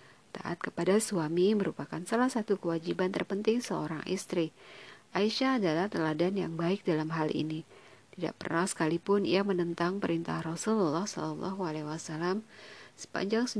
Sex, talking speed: female, 120 wpm